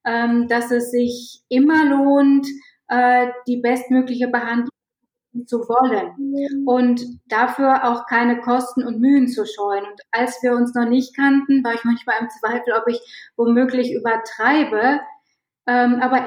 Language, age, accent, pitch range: German, 20-39, German, 230-265 Hz